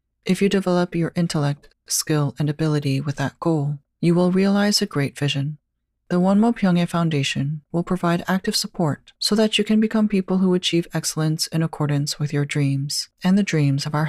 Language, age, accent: English, 40-59, American